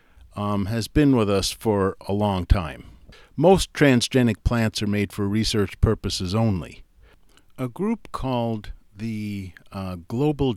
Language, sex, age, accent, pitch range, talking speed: English, male, 50-69, American, 90-115 Hz, 135 wpm